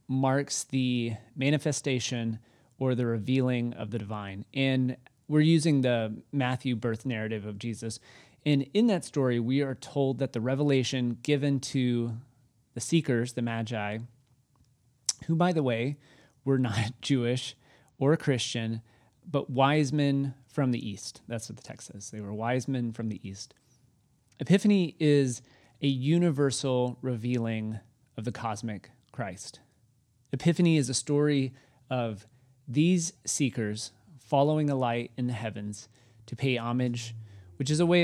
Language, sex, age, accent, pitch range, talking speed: English, male, 30-49, American, 115-135 Hz, 140 wpm